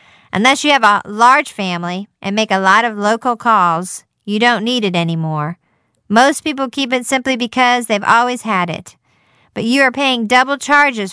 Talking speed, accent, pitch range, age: 185 wpm, American, 200-255 Hz, 50-69